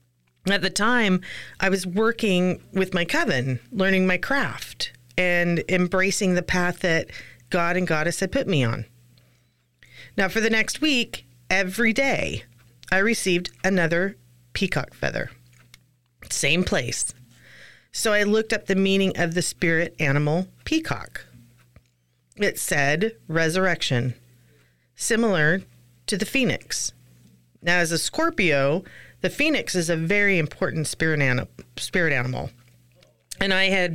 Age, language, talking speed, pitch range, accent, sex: 40-59, English, 125 wpm, 125-195 Hz, American, female